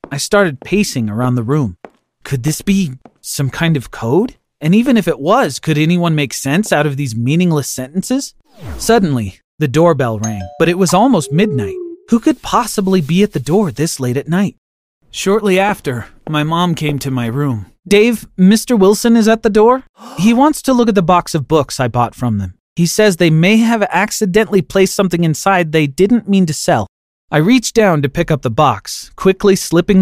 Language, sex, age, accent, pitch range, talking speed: English, male, 30-49, American, 130-200 Hz, 200 wpm